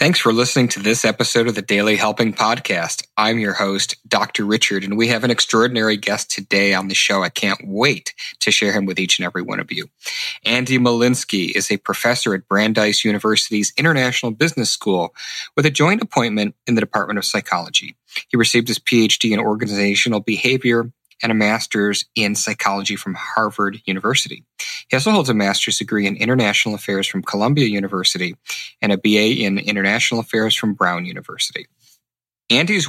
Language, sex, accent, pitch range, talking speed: English, male, American, 105-120 Hz, 175 wpm